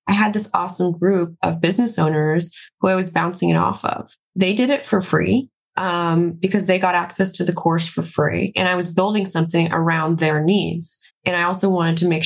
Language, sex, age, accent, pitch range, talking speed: English, female, 20-39, American, 160-190 Hz, 215 wpm